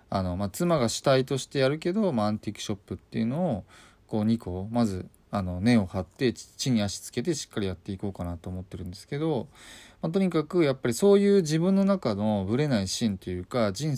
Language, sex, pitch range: Japanese, male, 95-135 Hz